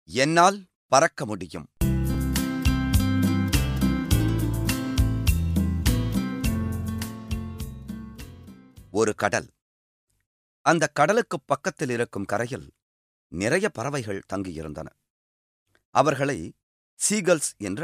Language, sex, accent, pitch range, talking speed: Tamil, male, native, 85-135 Hz, 55 wpm